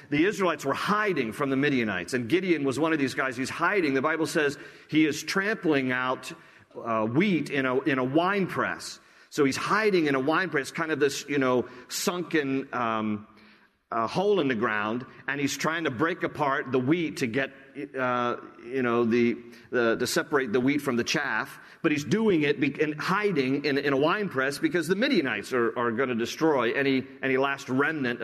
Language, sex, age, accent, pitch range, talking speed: English, male, 50-69, American, 130-170 Hz, 205 wpm